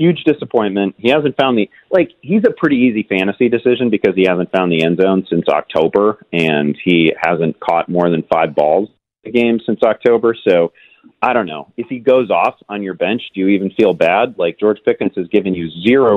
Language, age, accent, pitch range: English, 30-49, American, 85-110 Hz